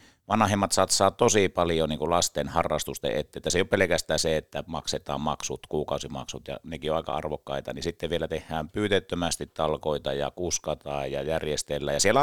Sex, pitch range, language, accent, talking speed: male, 75-100 Hz, Finnish, native, 155 wpm